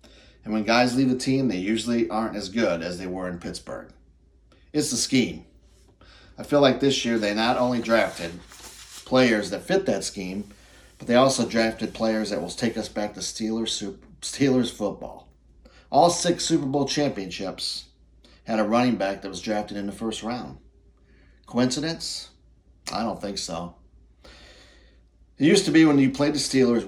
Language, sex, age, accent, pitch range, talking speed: English, male, 40-59, American, 85-120 Hz, 170 wpm